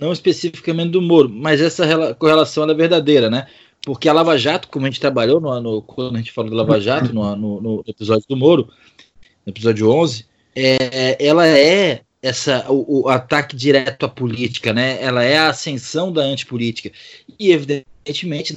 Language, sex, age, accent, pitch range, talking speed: Portuguese, male, 20-39, Brazilian, 120-155 Hz, 180 wpm